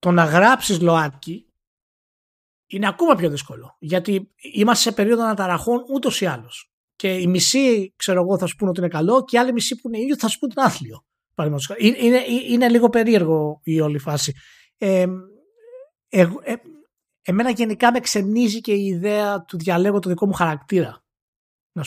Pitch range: 165-230 Hz